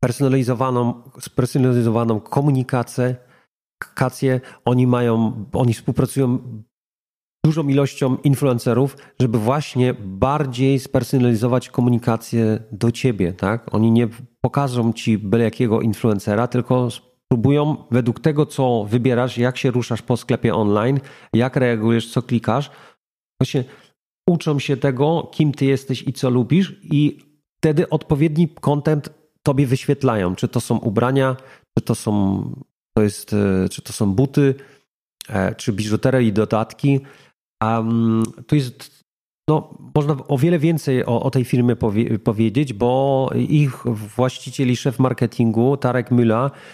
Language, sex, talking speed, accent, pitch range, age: Polish, male, 125 wpm, native, 115-140 Hz, 40-59